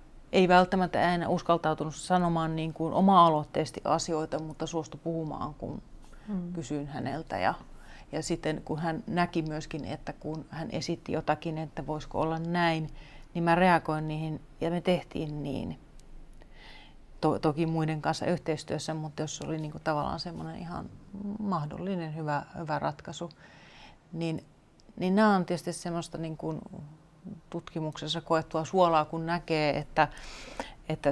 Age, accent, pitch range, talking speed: 30-49, native, 155-170 Hz, 135 wpm